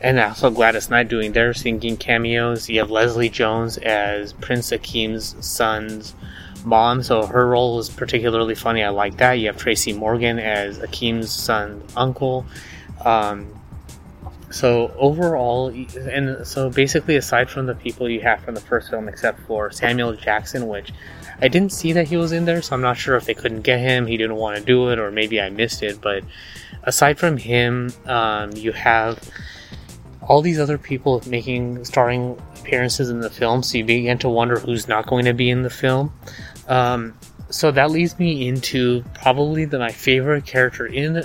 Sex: male